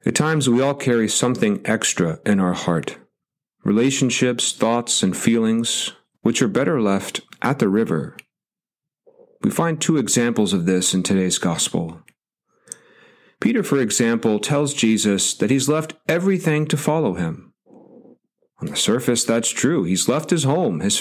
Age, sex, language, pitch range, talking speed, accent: 40-59, male, English, 105-160 Hz, 150 wpm, American